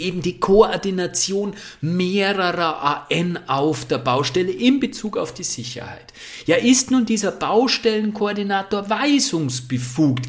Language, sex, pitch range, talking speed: German, male, 125-180 Hz, 110 wpm